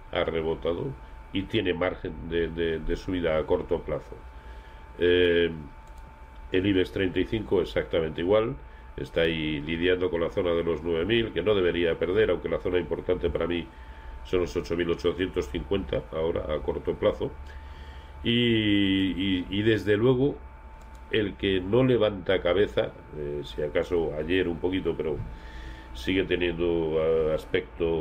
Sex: male